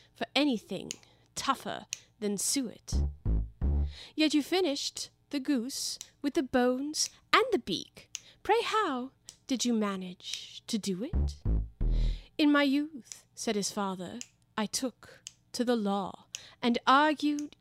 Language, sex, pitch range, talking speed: English, female, 205-280 Hz, 125 wpm